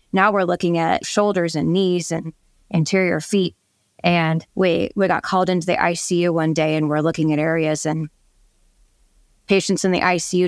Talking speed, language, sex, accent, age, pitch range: 170 wpm, English, female, American, 20-39, 165-195 Hz